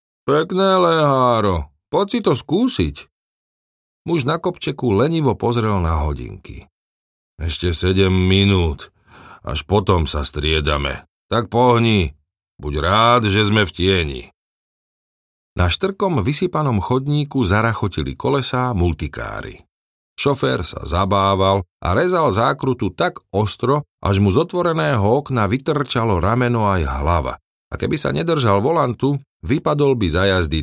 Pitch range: 80-130 Hz